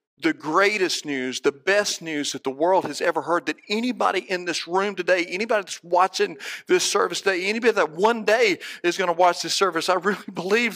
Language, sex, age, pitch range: English, male, 40-59, 175-205 Hz